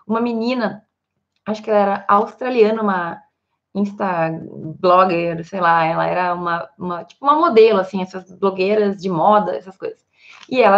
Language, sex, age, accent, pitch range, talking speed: Portuguese, female, 20-39, Brazilian, 200-235 Hz, 145 wpm